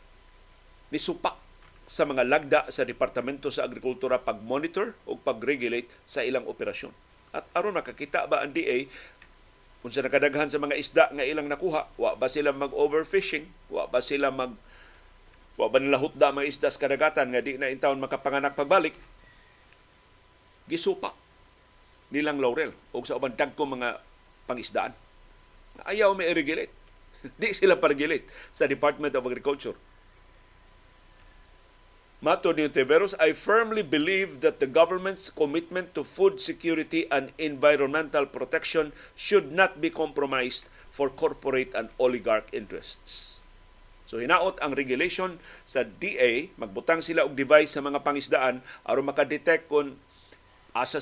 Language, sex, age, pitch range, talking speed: Filipino, male, 50-69, 130-165 Hz, 125 wpm